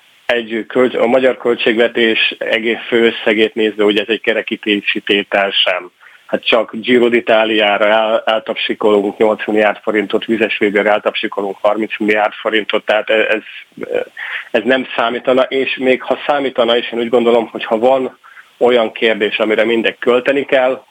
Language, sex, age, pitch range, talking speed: Hungarian, male, 30-49, 105-120 Hz, 140 wpm